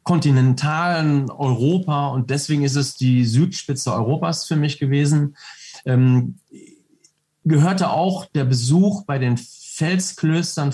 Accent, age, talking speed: German, 40-59, 110 wpm